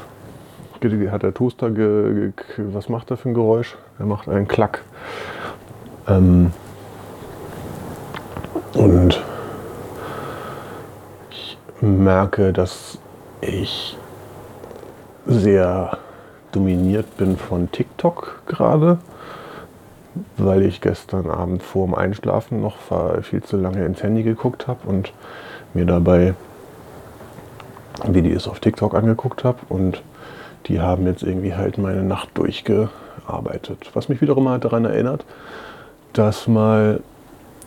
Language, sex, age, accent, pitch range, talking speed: German, male, 30-49, German, 95-110 Hz, 105 wpm